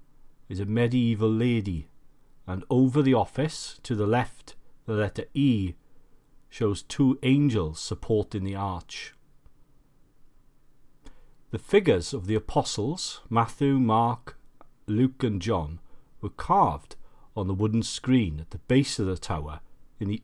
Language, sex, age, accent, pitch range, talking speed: English, male, 40-59, British, 100-130 Hz, 130 wpm